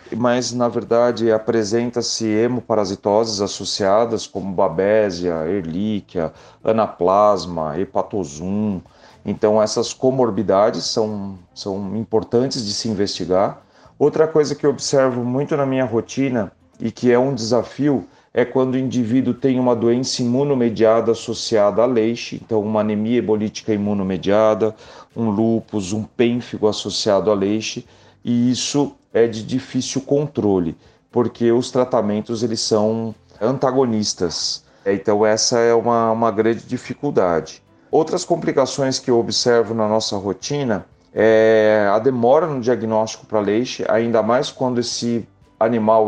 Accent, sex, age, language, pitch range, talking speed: Brazilian, male, 40-59, Portuguese, 110-125 Hz, 125 wpm